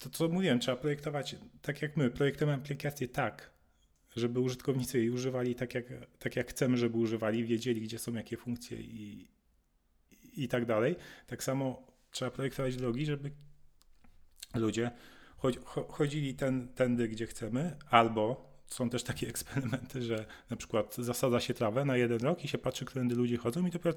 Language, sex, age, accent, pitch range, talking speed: Polish, male, 40-59, native, 110-135 Hz, 175 wpm